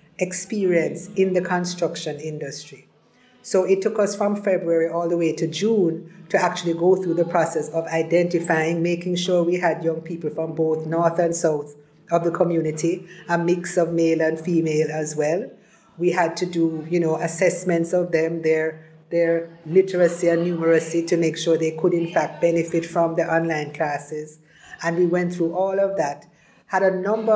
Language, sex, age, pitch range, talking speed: English, female, 50-69, 160-180 Hz, 175 wpm